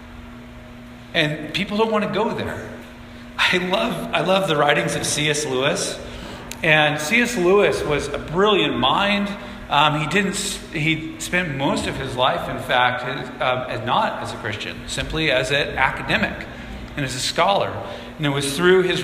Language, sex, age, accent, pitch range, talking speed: English, male, 40-59, American, 145-185 Hz, 165 wpm